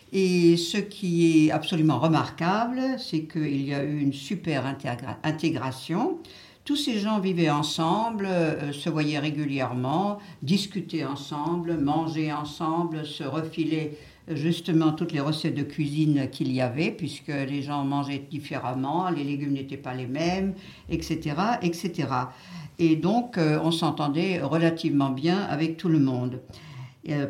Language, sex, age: French, female, 60-79